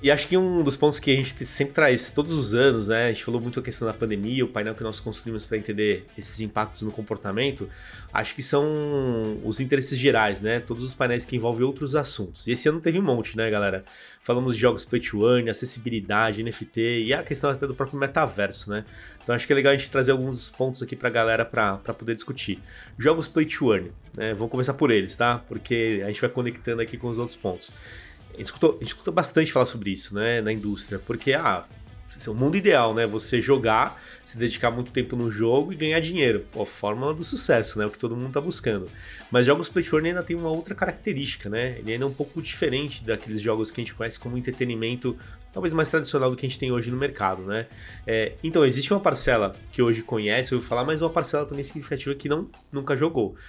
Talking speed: 225 wpm